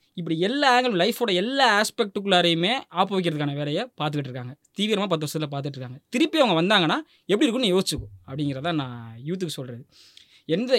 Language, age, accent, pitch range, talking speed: Tamil, 20-39, native, 145-200 Hz, 145 wpm